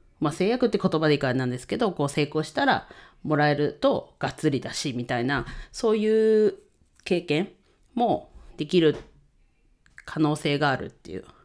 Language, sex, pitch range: Japanese, female, 130-175 Hz